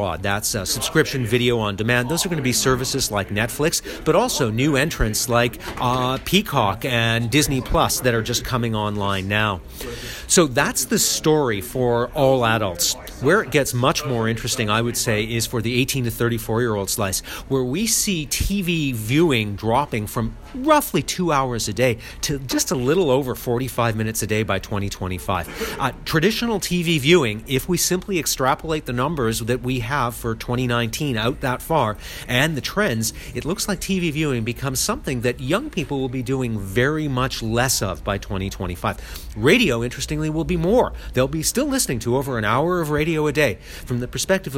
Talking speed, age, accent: 180 wpm, 40-59, American